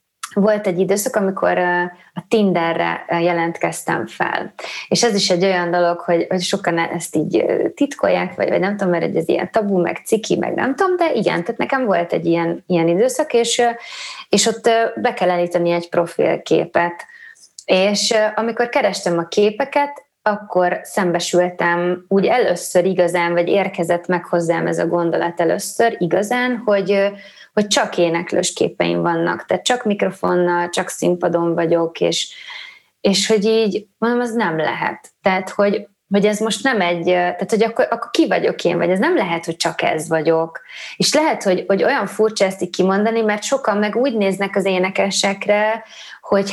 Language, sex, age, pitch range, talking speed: Hungarian, female, 20-39, 175-225 Hz, 165 wpm